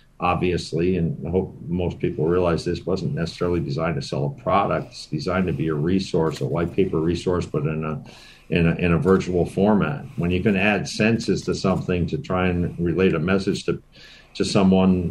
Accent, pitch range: American, 85-100 Hz